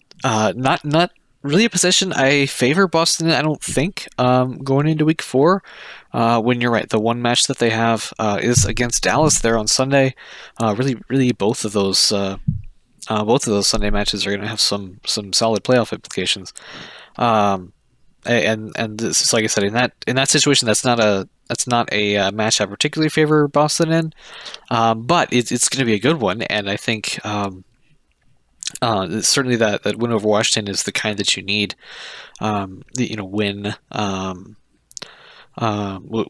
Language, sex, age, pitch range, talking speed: English, male, 20-39, 105-125 Hz, 195 wpm